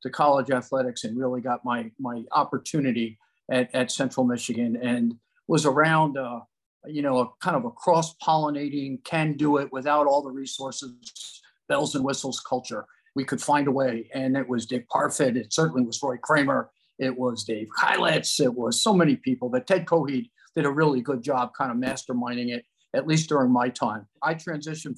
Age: 50-69